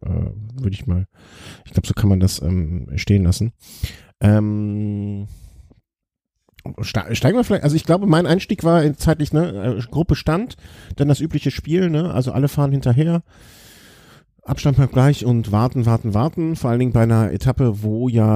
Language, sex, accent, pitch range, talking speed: German, male, German, 100-125 Hz, 170 wpm